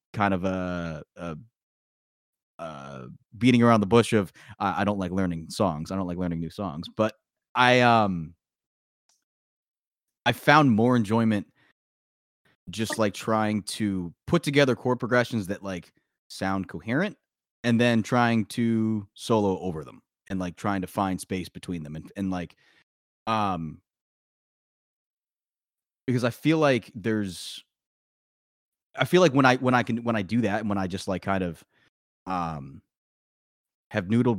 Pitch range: 85-110 Hz